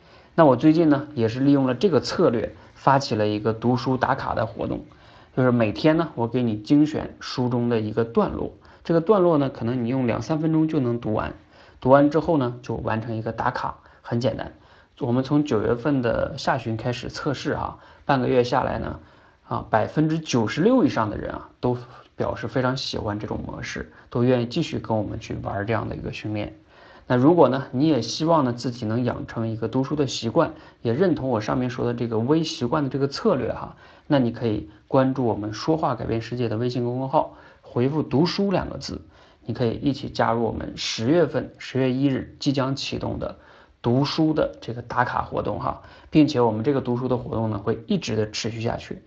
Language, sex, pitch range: Chinese, male, 110-140 Hz